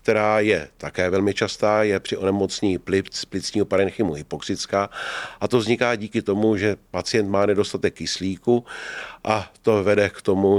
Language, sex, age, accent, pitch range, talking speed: Czech, male, 40-59, native, 90-105 Hz, 155 wpm